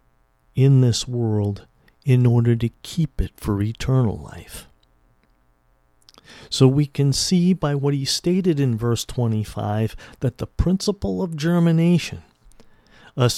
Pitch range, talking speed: 105-165 Hz, 125 wpm